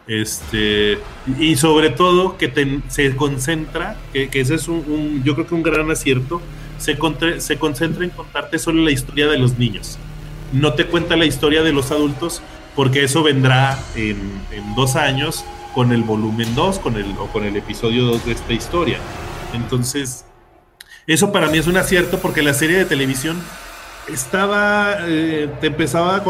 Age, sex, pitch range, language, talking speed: 30-49, male, 120-155 Hz, English, 175 wpm